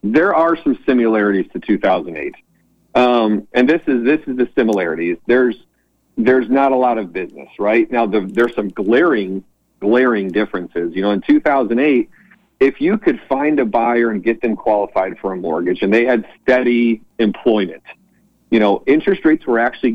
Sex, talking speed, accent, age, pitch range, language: male, 170 wpm, American, 50-69, 110-135 Hz, English